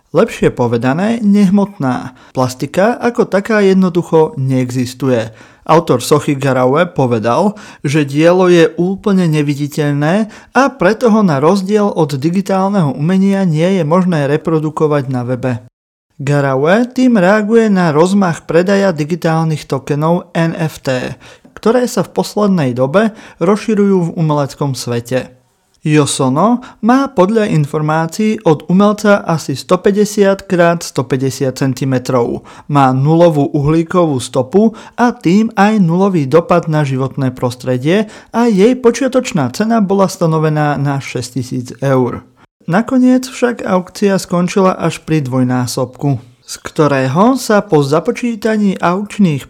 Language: Slovak